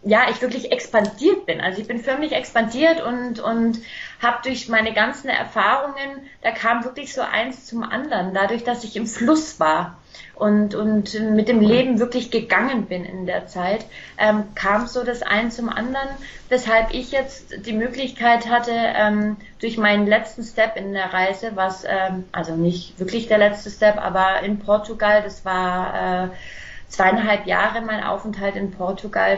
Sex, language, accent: female, German, German